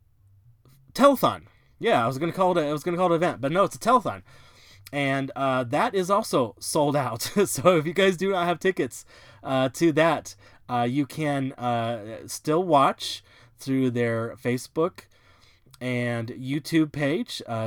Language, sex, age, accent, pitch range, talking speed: English, male, 20-39, American, 115-135 Hz, 170 wpm